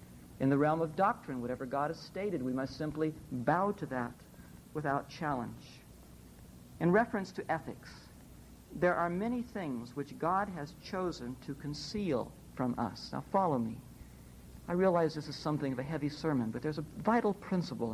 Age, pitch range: 60-79, 125-190 Hz